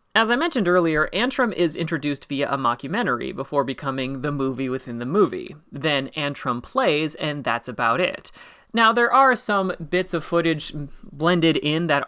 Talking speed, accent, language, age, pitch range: 170 wpm, American, English, 30-49, 145-195 Hz